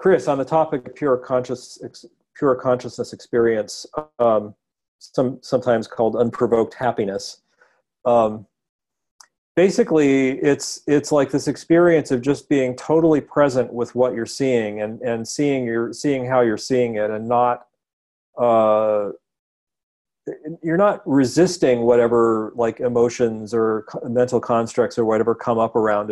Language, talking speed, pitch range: English, 135 wpm, 115-135 Hz